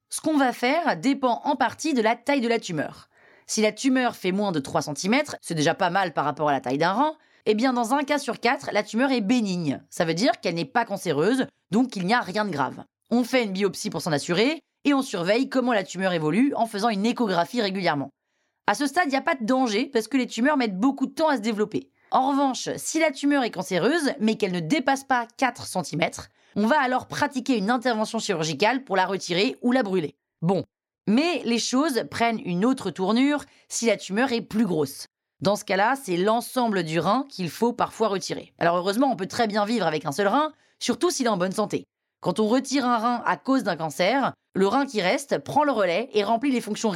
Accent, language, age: French, French, 30-49